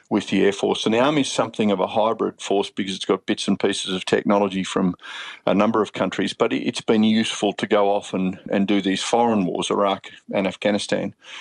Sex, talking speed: male, 220 wpm